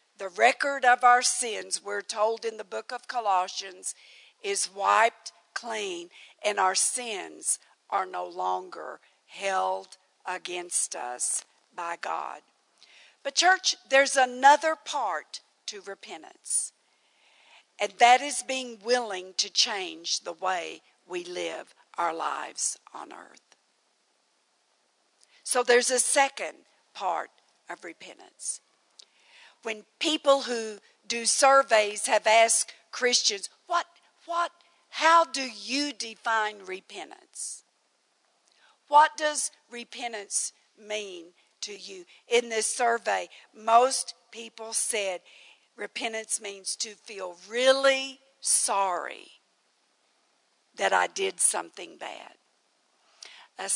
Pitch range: 205-275 Hz